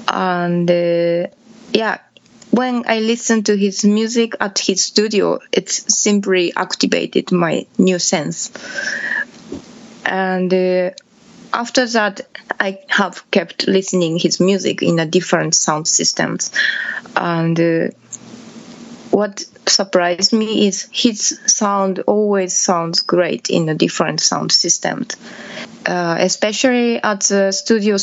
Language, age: English, 20-39